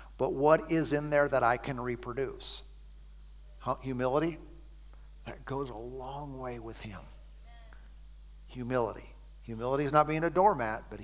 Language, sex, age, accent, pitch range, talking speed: English, male, 50-69, American, 120-175 Hz, 135 wpm